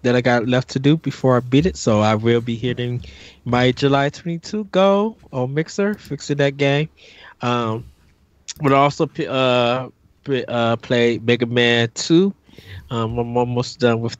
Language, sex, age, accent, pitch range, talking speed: English, male, 20-39, American, 110-140 Hz, 165 wpm